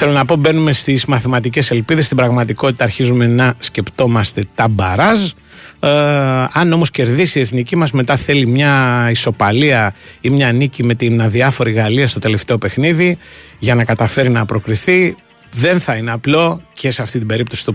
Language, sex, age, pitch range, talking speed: Greek, male, 30-49, 115-145 Hz, 170 wpm